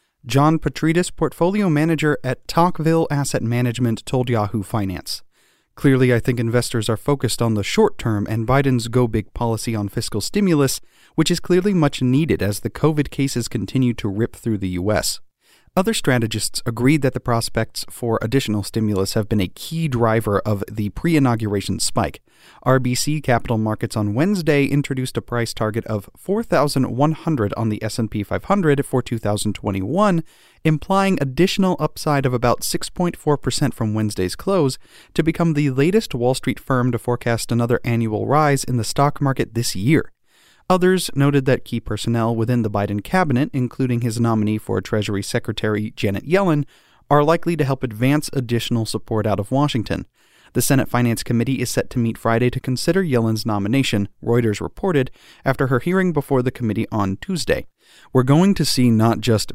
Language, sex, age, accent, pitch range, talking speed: English, male, 40-59, American, 110-145 Hz, 160 wpm